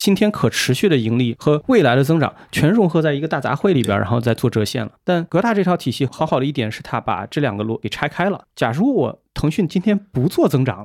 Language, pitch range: Chinese, 115-150 Hz